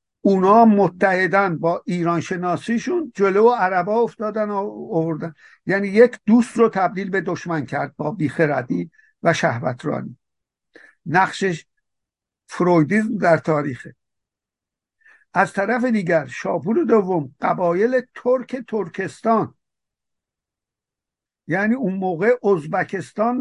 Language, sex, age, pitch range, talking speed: Persian, male, 60-79, 170-225 Hz, 110 wpm